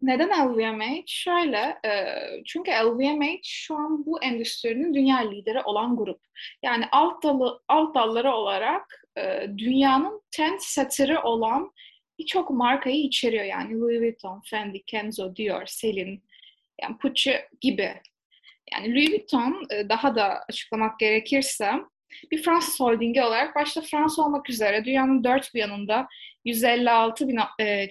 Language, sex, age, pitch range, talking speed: Turkish, female, 10-29, 225-290 Hz, 120 wpm